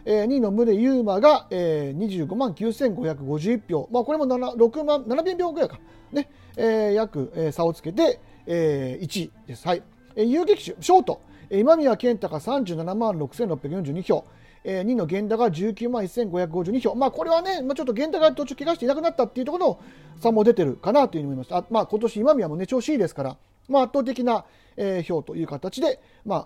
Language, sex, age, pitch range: Japanese, male, 40-59, 165-255 Hz